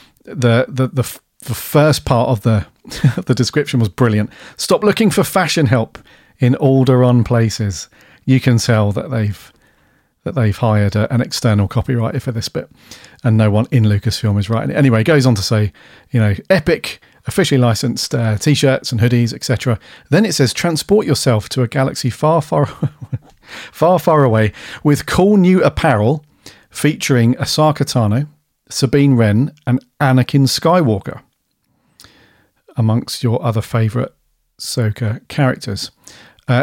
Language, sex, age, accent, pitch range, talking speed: English, male, 40-59, British, 115-140 Hz, 150 wpm